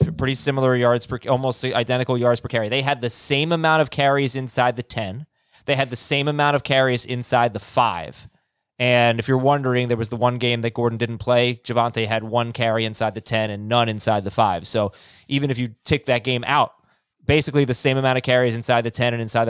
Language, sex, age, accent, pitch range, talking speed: English, male, 20-39, American, 120-140 Hz, 225 wpm